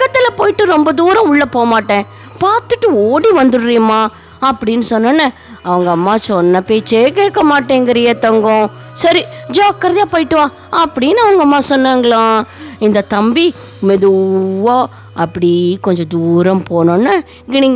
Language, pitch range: Tamil, 200-275 Hz